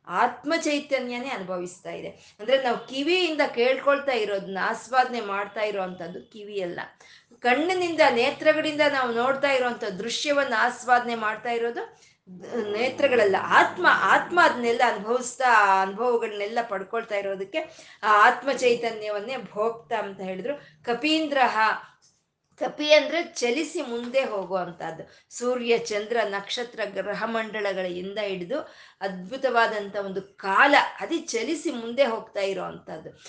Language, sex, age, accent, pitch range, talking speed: Kannada, female, 20-39, native, 200-275 Hz, 95 wpm